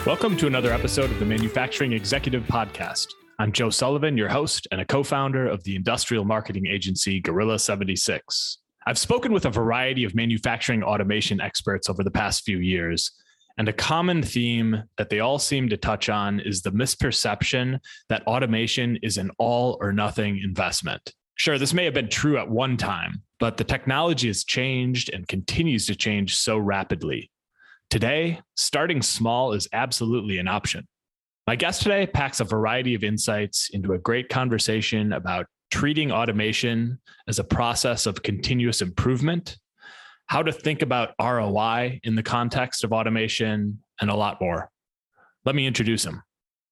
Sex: male